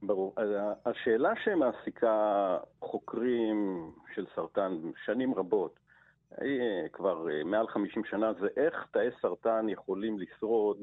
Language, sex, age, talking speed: Hebrew, male, 50-69, 100 wpm